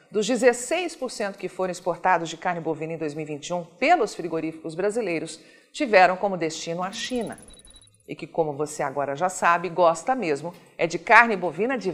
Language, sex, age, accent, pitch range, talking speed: Portuguese, female, 50-69, Brazilian, 170-230 Hz, 160 wpm